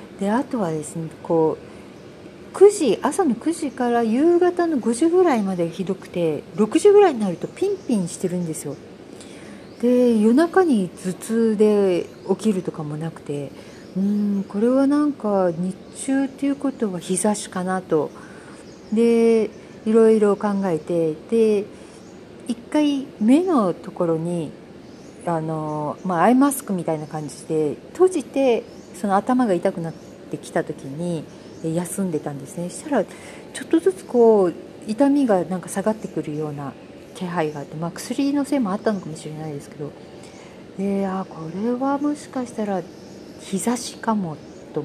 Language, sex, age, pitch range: Japanese, female, 40-59, 170-255 Hz